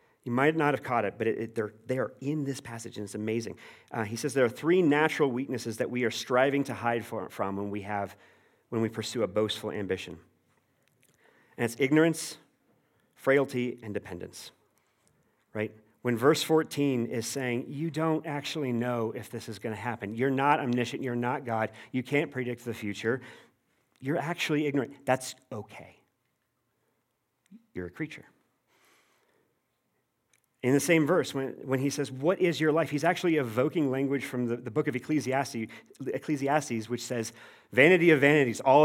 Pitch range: 115-140 Hz